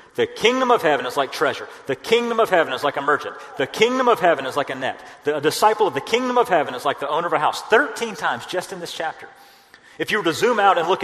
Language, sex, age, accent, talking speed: English, male, 40-59, American, 275 wpm